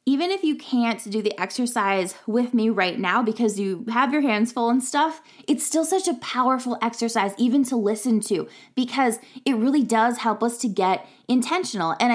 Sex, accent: female, American